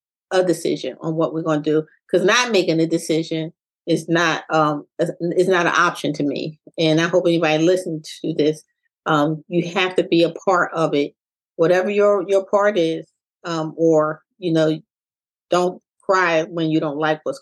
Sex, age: female, 30-49